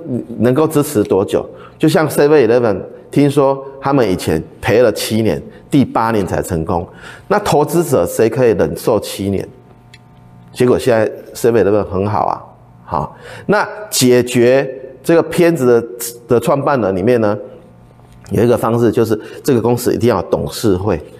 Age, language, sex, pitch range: 30-49, Chinese, male, 85-130 Hz